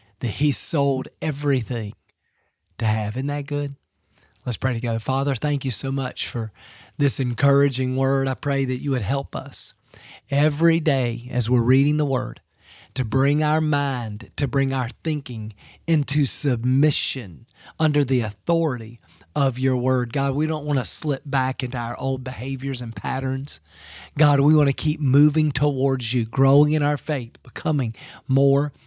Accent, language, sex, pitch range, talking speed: American, English, male, 120-145 Hz, 160 wpm